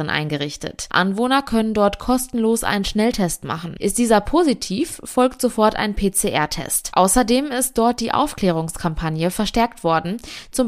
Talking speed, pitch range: 130 wpm, 185-235 Hz